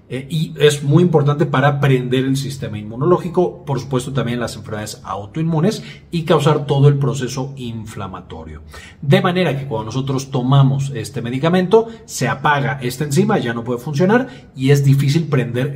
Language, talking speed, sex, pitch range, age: Spanish, 155 wpm, male, 115-150 Hz, 40-59